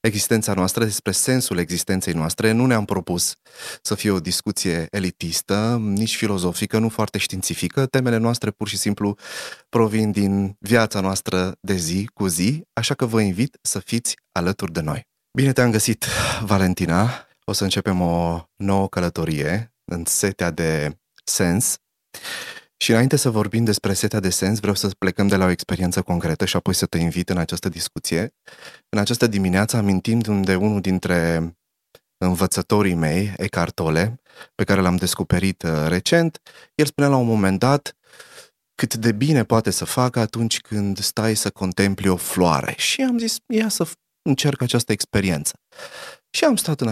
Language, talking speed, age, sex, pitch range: Romanian, 160 wpm, 30-49, male, 90-115 Hz